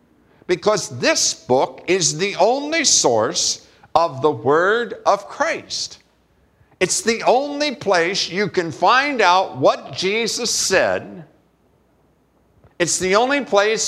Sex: male